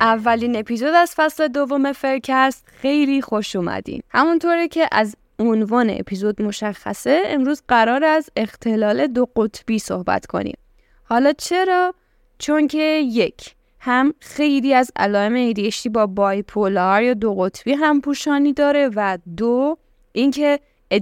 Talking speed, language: 125 wpm, Persian